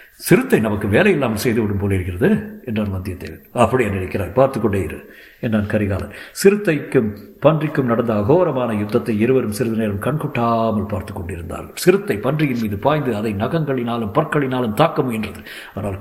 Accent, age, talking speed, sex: native, 50-69, 115 wpm, male